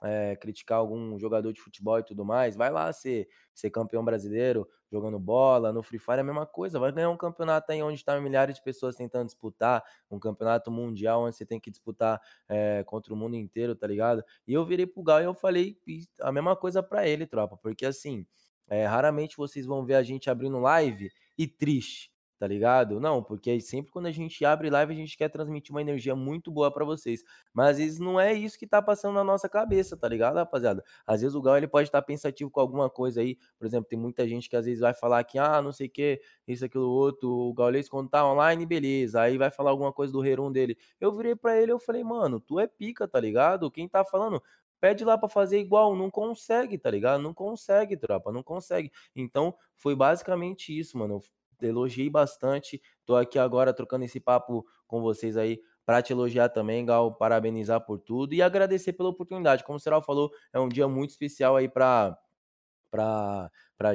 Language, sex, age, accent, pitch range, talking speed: Portuguese, male, 20-39, Brazilian, 115-155 Hz, 210 wpm